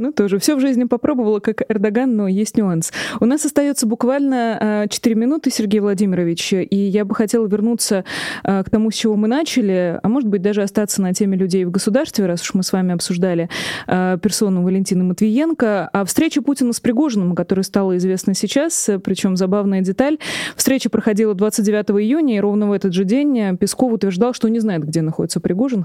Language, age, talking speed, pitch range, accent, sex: Russian, 20-39, 185 wpm, 190-235 Hz, native, female